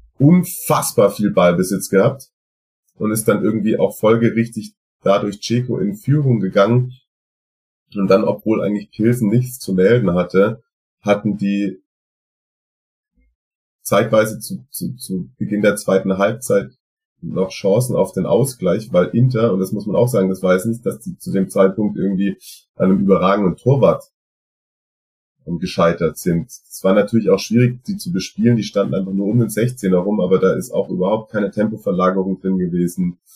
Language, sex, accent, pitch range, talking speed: German, male, German, 90-110 Hz, 155 wpm